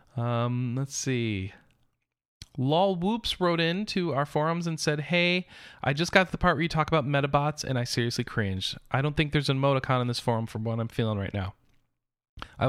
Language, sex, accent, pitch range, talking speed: English, male, American, 120-175 Hz, 205 wpm